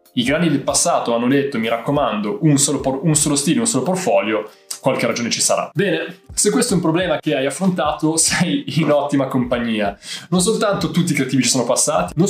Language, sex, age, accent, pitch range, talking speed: Italian, male, 20-39, native, 135-175 Hz, 210 wpm